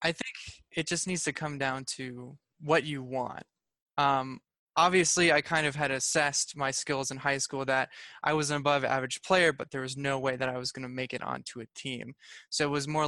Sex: male